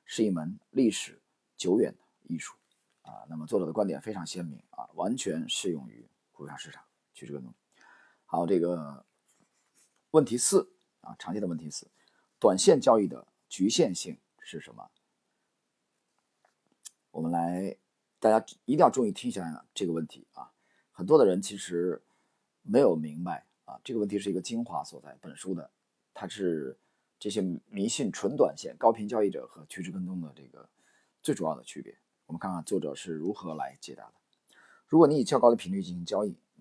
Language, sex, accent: Chinese, male, native